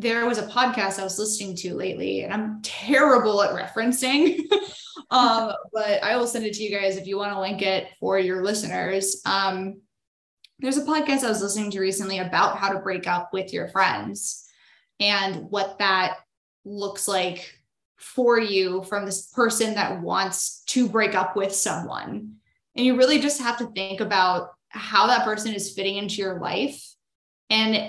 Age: 20-39